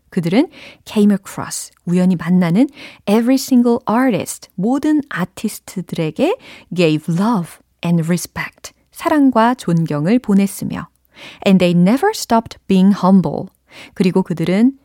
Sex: female